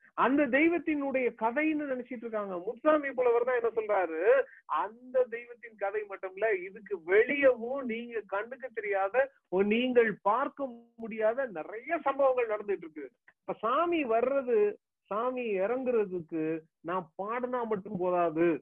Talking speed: 100 wpm